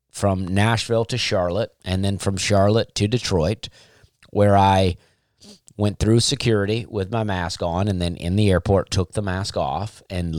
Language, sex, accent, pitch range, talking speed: English, male, American, 95-110 Hz, 170 wpm